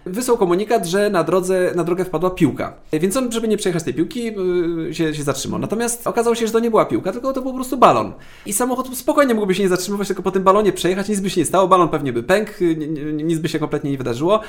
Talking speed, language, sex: 250 wpm, Polish, male